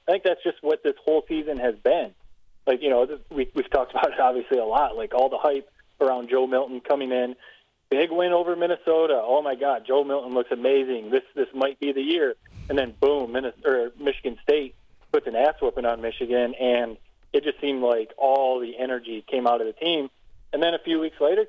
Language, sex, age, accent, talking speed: English, male, 30-49, American, 210 wpm